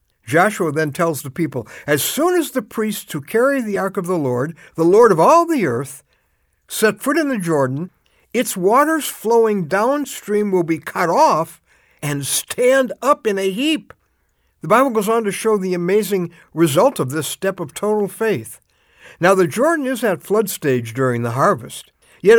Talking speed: 180 wpm